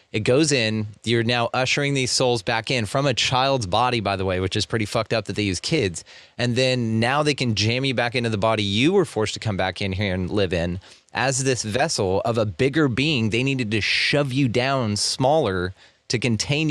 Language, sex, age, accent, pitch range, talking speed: English, male, 30-49, American, 105-125 Hz, 230 wpm